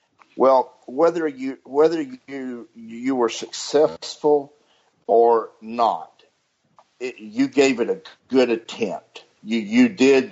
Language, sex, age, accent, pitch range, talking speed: English, male, 50-69, American, 110-135 Hz, 115 wpm